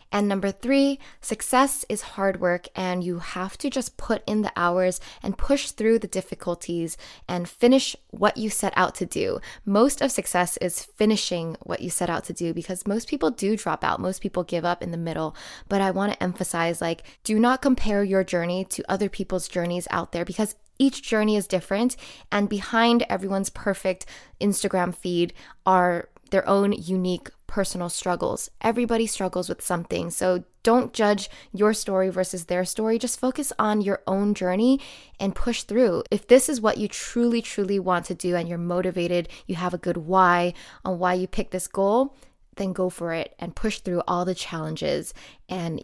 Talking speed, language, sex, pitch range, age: 185 wpm, English, female, 180-220 Hz, 10-29